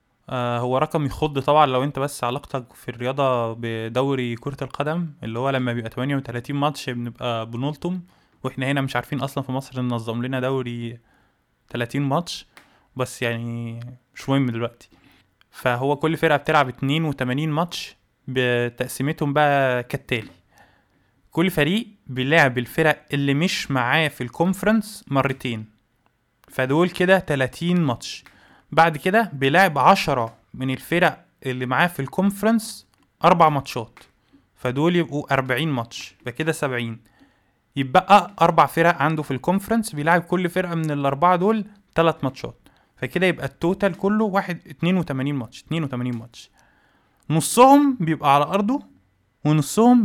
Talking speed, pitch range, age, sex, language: 125 wpm, 125-170 Hz, 20-39, male, Arabic